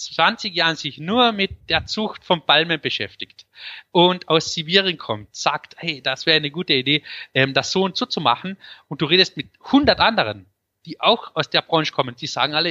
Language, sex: English, male